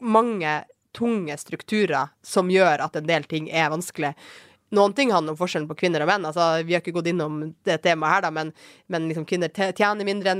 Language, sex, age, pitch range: English, female, 20-39, 155-200 Hz